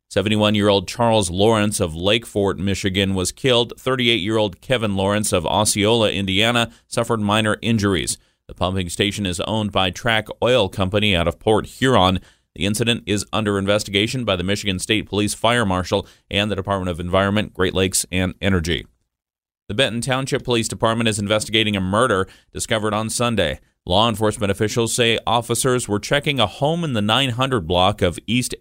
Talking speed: 175 wpm